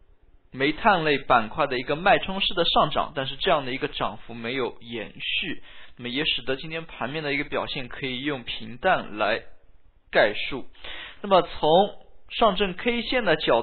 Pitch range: 125-175 Hz